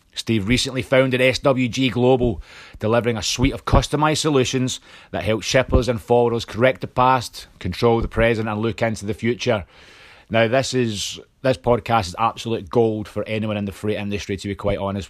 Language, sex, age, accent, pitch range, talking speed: English, male, 30-49, British, 100-120 Hz, 180 wpm